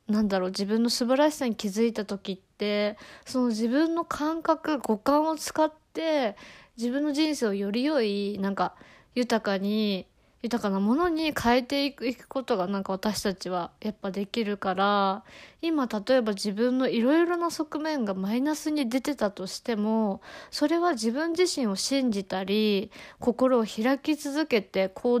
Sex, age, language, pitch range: female, 20-39, Japanese, 205-285 Hz